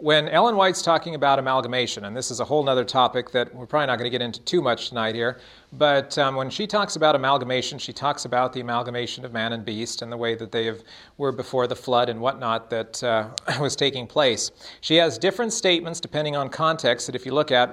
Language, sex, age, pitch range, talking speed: English, male, 40-59, 130-160 Hz, 235 wpm